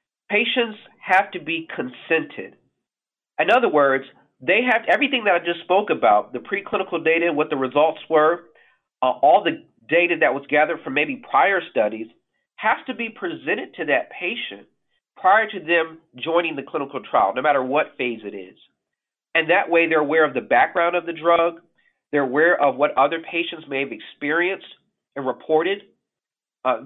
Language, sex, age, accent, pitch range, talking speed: English, male, 40-59, American, 145-175 Hz, 170 wpm